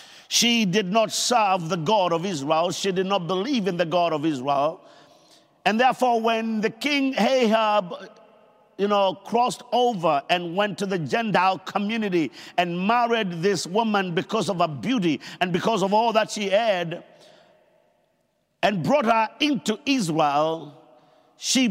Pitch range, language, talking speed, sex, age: 175-235 Hz, English, 150 wpm, male, 50-69